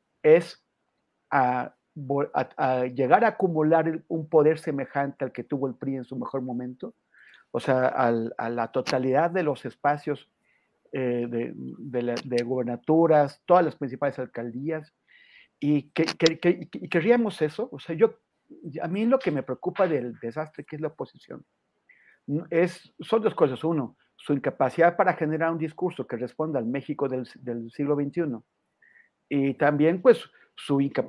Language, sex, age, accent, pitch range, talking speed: Spanish, male, 50-69, Mexican, 130-165 Hz, 155 wpm